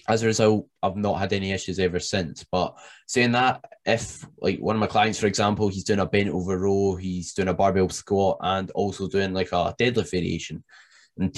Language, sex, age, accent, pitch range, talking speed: English, male, 10-29, British, 90-105 Hz, 210 wpm